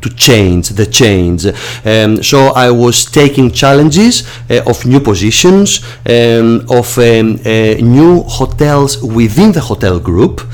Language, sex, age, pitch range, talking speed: English, male, 40-59, 105-130 Hz, 135 wpm